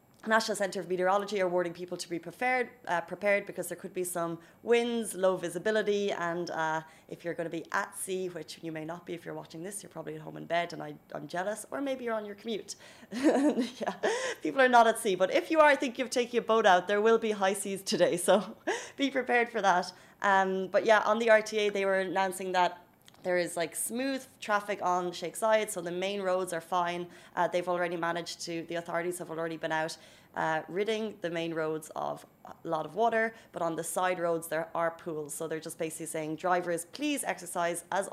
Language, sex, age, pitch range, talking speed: Arabic, female, 20-39, 170-215 Hz, 225 wpm